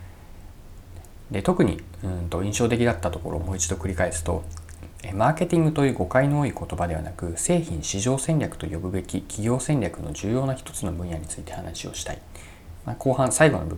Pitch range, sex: 85-120 Hz, male